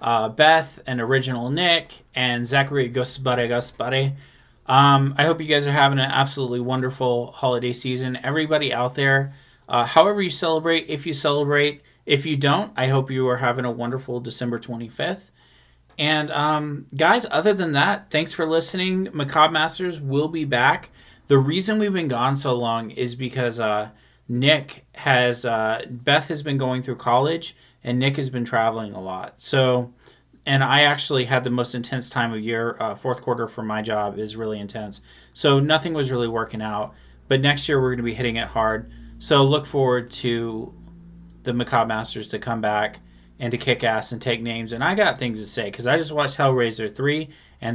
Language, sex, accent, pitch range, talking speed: English, male, American, 120-150 Hz, 185 wpm